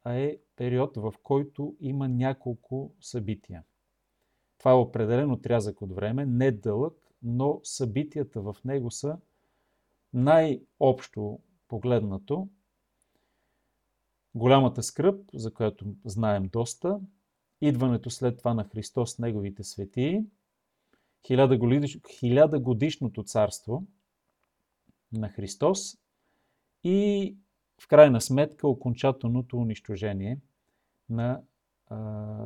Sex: male